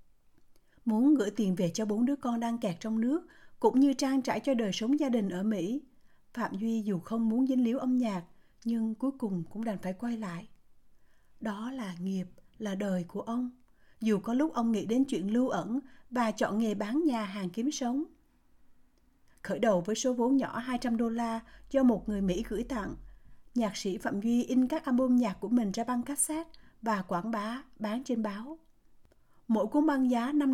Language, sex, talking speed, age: Vietnamese, female, 200 wpm, 60-79